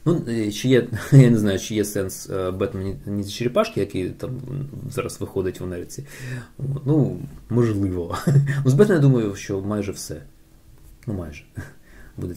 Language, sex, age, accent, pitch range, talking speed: Ukrainian, male, 20-39, native, 100-135 Hz, 150 wpm